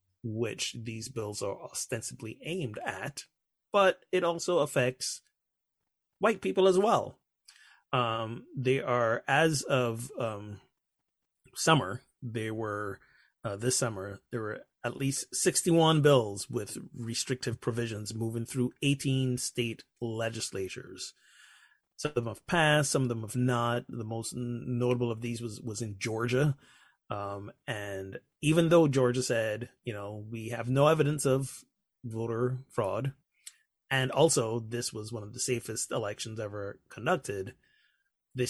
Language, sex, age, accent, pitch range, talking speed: English, male, 30-49, American, 110-130 Hz, 135 wpm